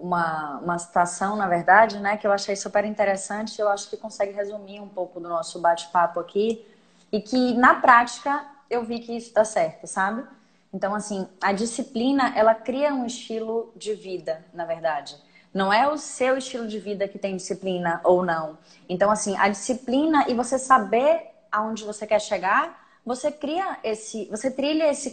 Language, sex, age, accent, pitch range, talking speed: Portuguese, female, 10-29, Brazilian, 195-250 Hz, 175 wpm